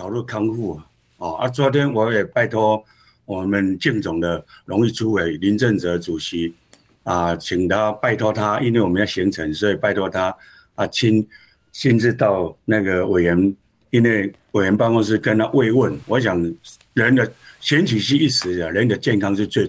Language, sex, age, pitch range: Chinese, male, 60-79, 100-140 Hz